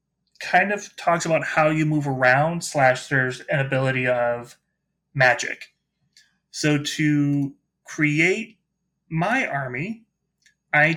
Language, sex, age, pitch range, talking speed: English, male, 30-49, 140-165 Hz, 110 wpm